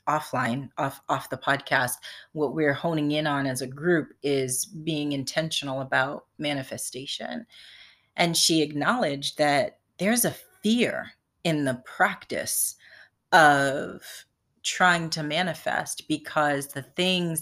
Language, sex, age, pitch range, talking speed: English, female, 30-49, 145-180 Hz, 120 wpm